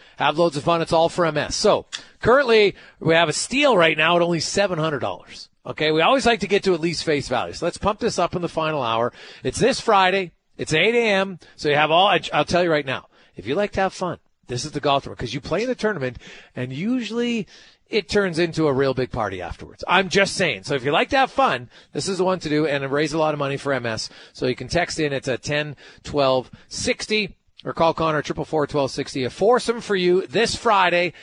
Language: English